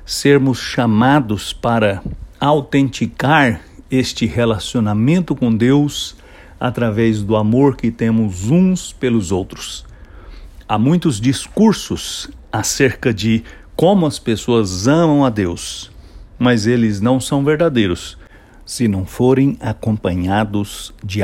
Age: 60-79